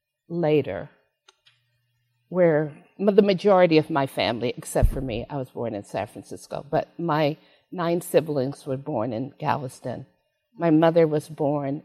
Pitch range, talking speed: 140-170 Hz, 140 wpm